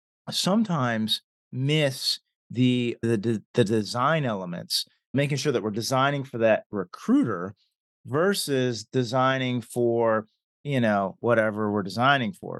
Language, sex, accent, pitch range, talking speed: English, male, American, 110-140 Hz, 115 wpm